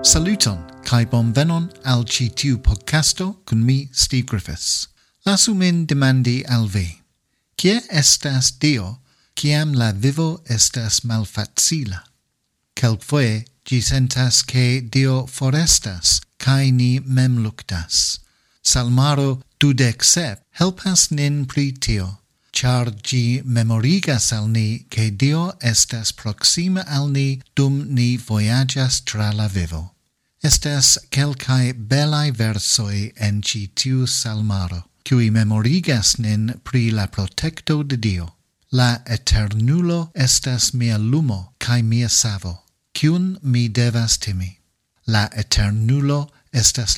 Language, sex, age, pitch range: English, male, 50-69, 110-140 Hz